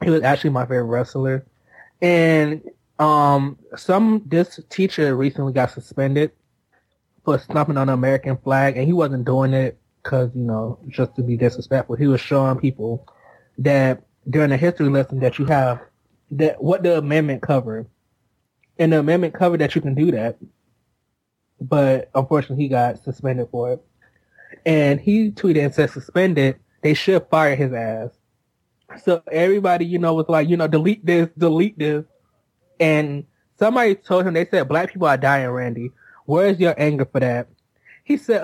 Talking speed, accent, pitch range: 165 wpm, American, 130-170 Hz